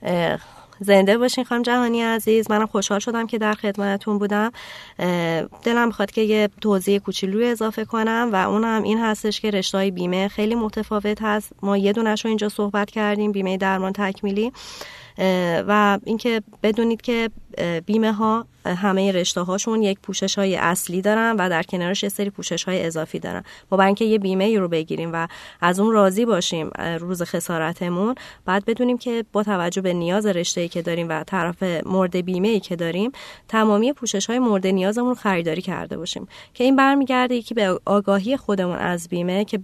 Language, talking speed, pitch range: Persian, 170 wpm, 185-225 Hz